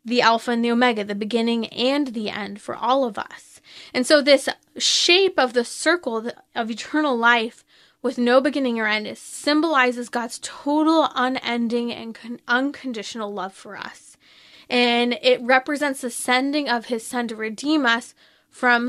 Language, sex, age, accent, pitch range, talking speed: English, female, 20-39, American, 235-290 Hz, 160 wpm